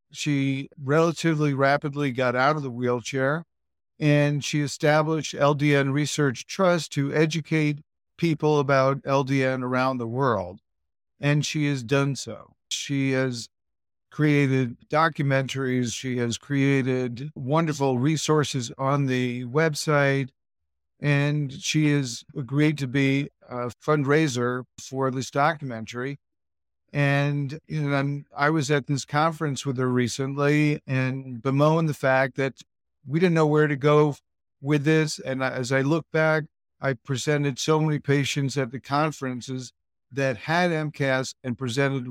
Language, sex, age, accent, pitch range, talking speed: English, male, 50-69, American, 125-145 Hz, 135 wpm